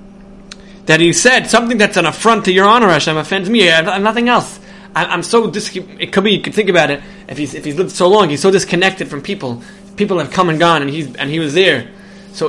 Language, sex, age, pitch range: English, male, 20-39, 155-200 Hz